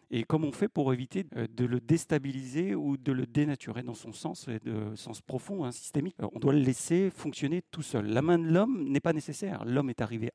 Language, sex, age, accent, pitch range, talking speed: French, male, 40-59, French, 110-140 Hz, 225 wpm